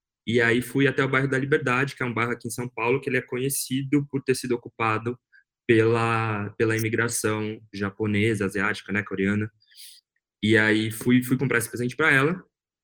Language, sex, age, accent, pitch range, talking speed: Portuguese, male, 20-39, Brazilian, 110-135 Hz, 185 wpm